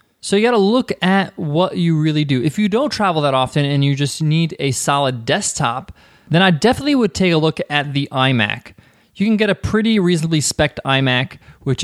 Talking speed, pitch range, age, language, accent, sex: 210 wpm, 130-160 Hz, 20-39, English, American, male